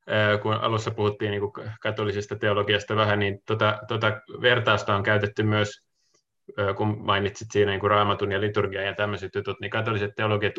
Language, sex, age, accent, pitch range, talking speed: Finnish, male, 20-39, native, 100-115 Hz, 155 wpm